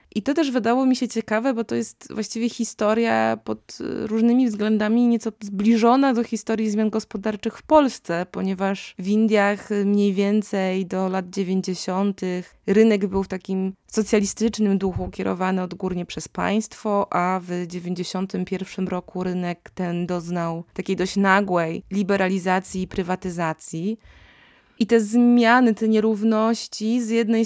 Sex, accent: female, native